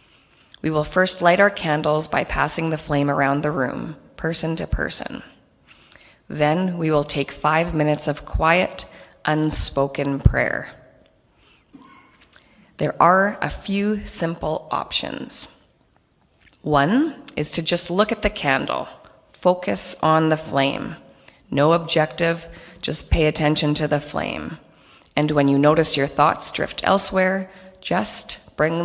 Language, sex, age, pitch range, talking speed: English, female, 30-49, 145-175 Hz, 130 wpm